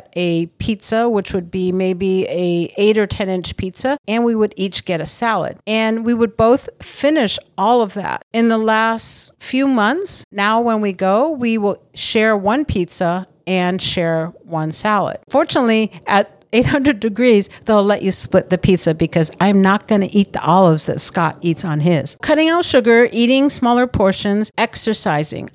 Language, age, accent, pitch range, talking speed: English, 50-69, American, 185-230 Hz, 175 wpm